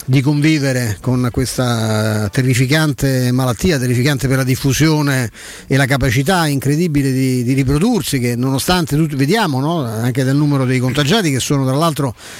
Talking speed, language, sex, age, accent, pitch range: 150 wpm, Italian, male, 50-69, native, 130-155 Hz